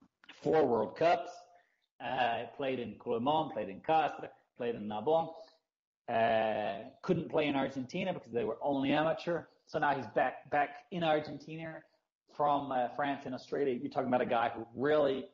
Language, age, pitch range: English, 30-49, 125-155 Hz